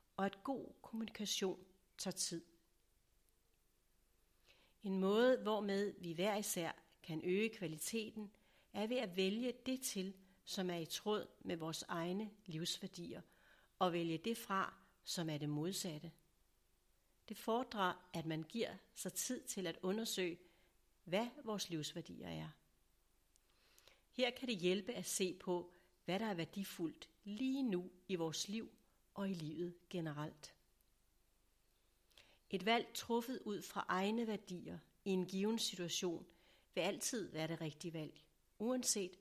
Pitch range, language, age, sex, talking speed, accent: 170-210 Hz, Danish, 60-79, female, 135 wpm, native